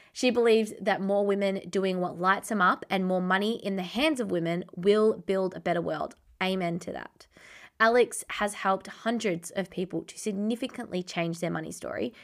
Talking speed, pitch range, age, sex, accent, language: 185 wpm, 180-225 Hz, 20-39, female, Australian, English